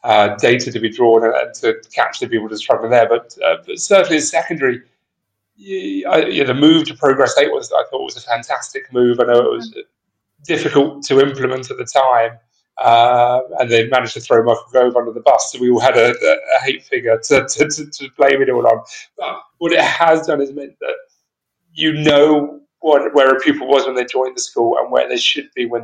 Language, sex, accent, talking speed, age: English, male, British, 210 wpm, 30-49